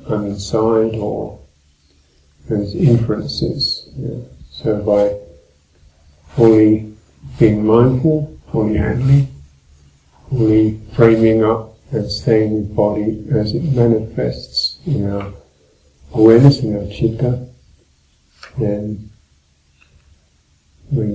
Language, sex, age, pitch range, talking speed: English, male, 50-69, 85-115 Hz, 85 wpm